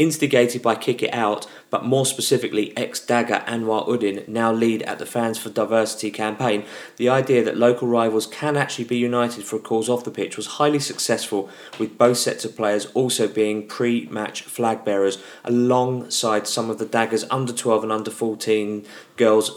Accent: British